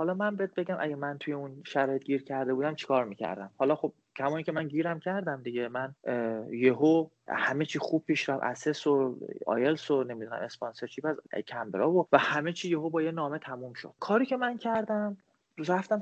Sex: male